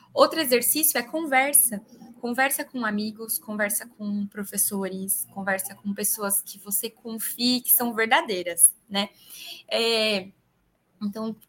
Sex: female